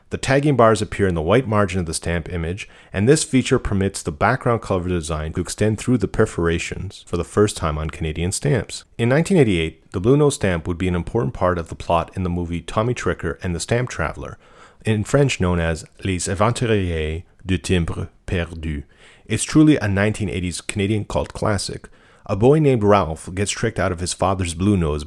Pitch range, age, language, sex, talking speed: 85-110 Hz, 40-59, English, male, 200 wpm